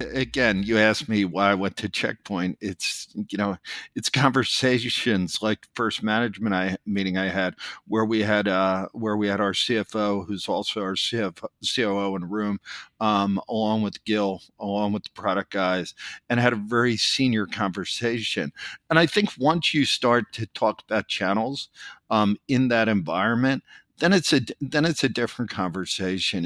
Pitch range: 100-120 Hz